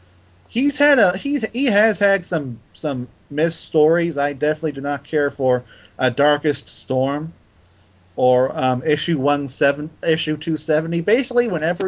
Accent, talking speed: American, 150 wpm